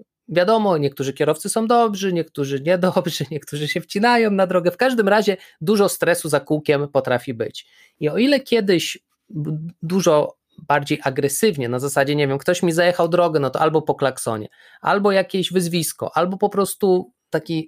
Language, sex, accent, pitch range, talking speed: Polish, male, native, 145-190 Hz, 165 wpm